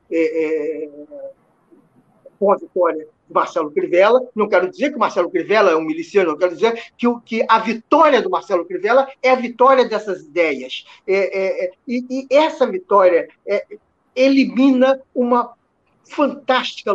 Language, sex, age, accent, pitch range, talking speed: Portuguese, male, 50-69, Brazilian, 200-280 Hz, 165 wpm